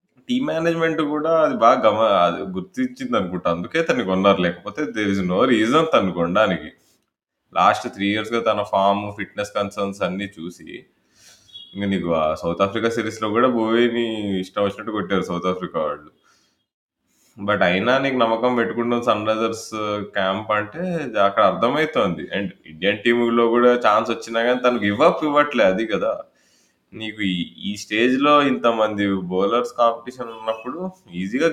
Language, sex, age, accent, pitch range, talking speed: Telugu, male, 20-39, native, 90-115 Hz, 140 wpm